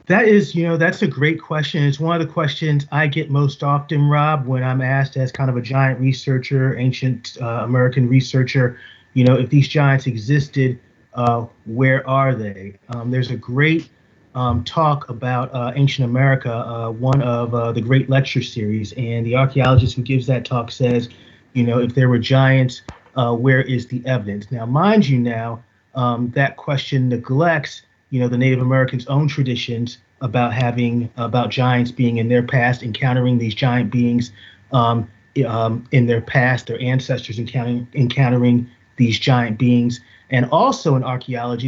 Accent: American